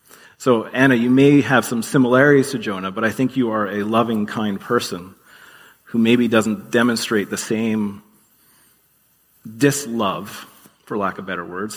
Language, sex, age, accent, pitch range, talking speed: English, male, 40-59, American, 105-125 Hz, 155 wpm